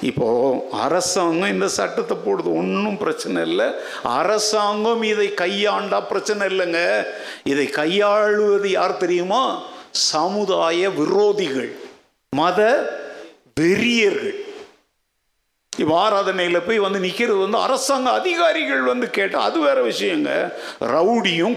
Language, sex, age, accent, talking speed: Tamil, male, 50-69, native, 95 wpm